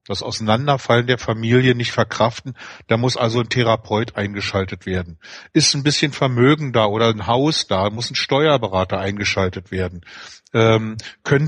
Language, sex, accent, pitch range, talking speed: German, male, German, 115-135 Hz, 150 wpm